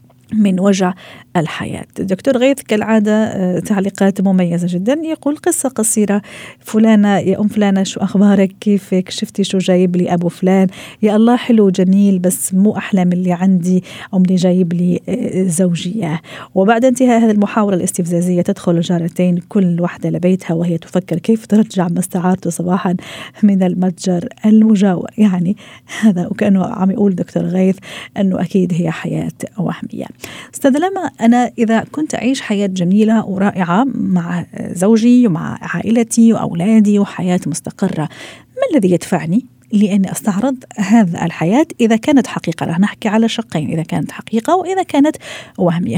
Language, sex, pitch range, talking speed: Arabic, female, 180-225 Hz, 135 wpm